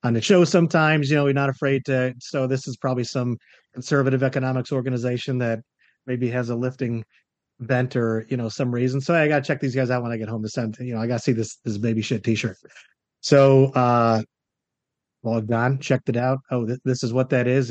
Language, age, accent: English, 30-49, American